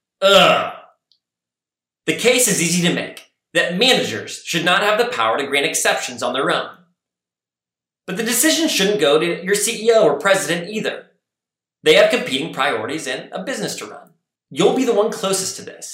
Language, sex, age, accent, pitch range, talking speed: English, male, 30-49, American, 135-200 Hz, 175 wpm